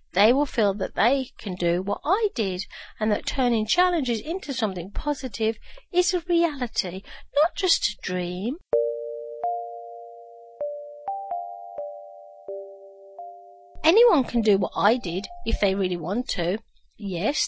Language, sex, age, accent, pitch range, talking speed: English, female, 40-59, British, 190-285 Hz, 125 wpm